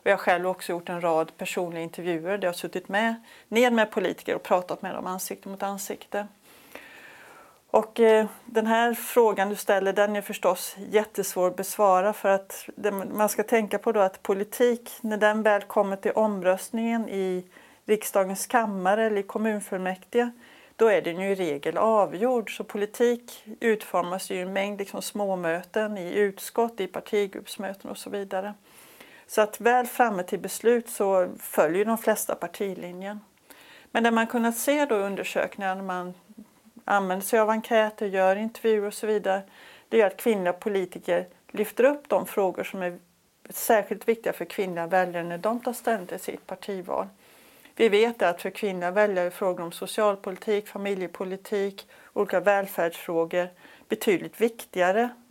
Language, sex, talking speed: English, female, 160 wpm